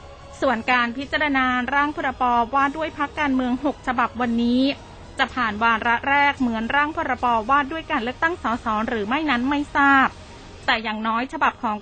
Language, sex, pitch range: Thai, female, 230-280 Hz